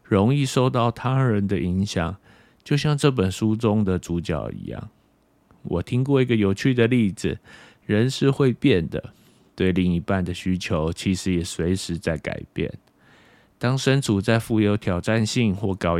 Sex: male